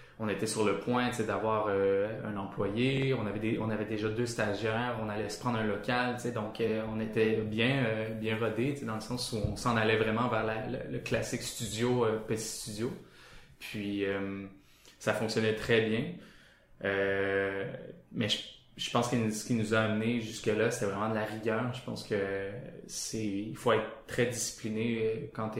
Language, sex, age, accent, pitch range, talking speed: French, male, 20-39, Canadian, 110-115 Hz, 210 wpm